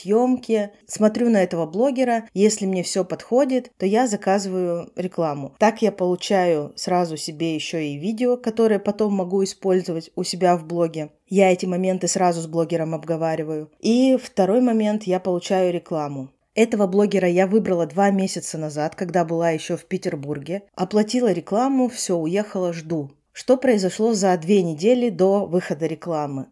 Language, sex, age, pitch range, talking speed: Russian, female, 20-39, 165-210 Hz, 150 wpm